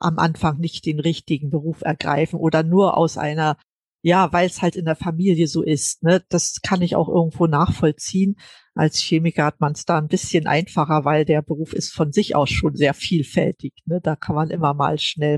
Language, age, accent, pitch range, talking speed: German, 50-69, German, 160-195 Hz, 200 wpm